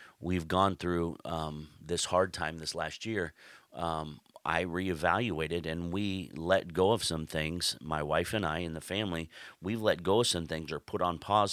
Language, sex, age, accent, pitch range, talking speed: English, male, 30-49, American, 80-95 Hz, 195 wpm